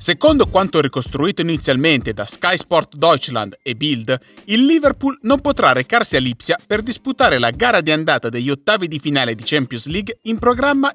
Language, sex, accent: Italian, male, native